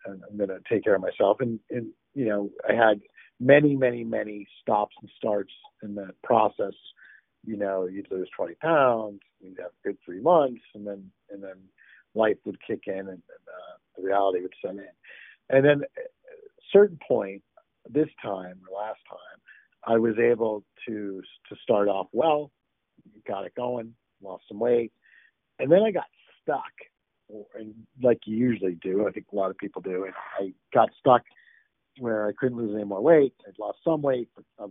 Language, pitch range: English, 100-120 Hz